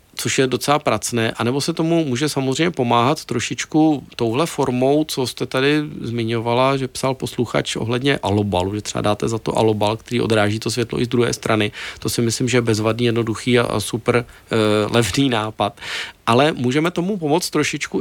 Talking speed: 175 wpm